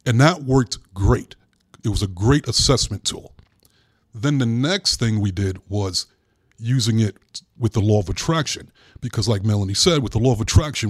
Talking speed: 180 wpm